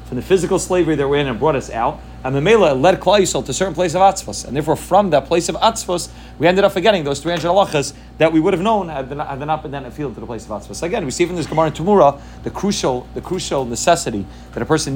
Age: 30-49